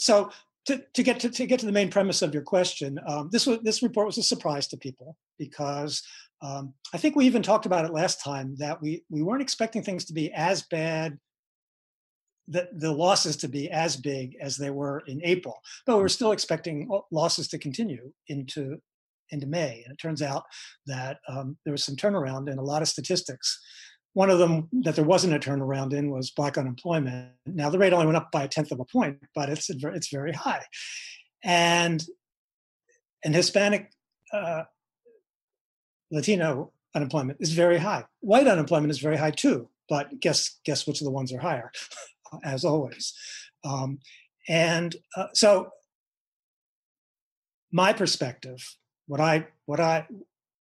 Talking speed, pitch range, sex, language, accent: 175 wpm, 145-190 Hz, male, English, American